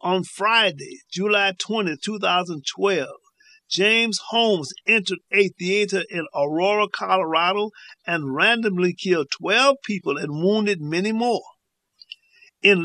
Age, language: 50-69, English